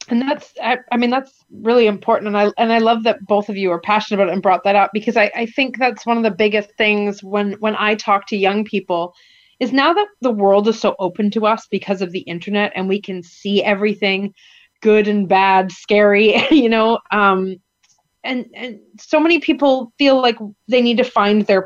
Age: 30-49